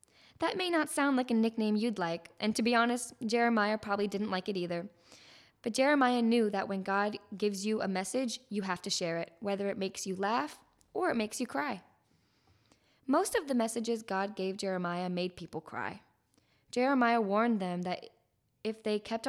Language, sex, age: English, female, 10-29